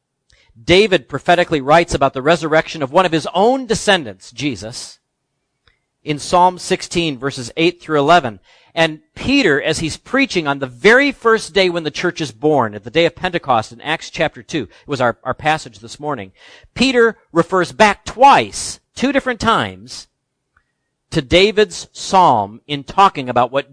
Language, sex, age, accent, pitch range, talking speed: English, male, 50-69, American, 120-170 Hz, 165 wpm